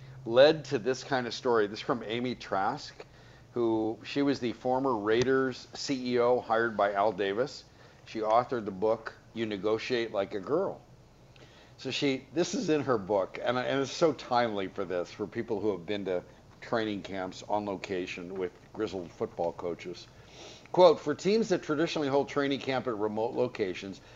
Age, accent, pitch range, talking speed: 50-69, American, 110-140 Hz, 175 wpm